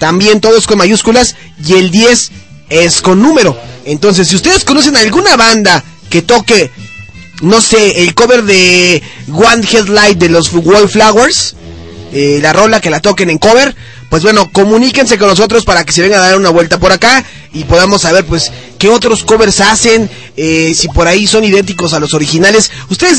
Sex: male